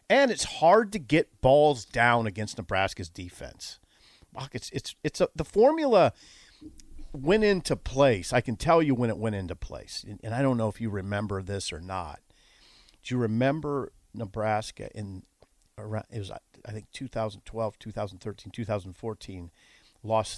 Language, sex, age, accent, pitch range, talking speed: English, male, 50-69, American, 95-125 Hz, 155 wpm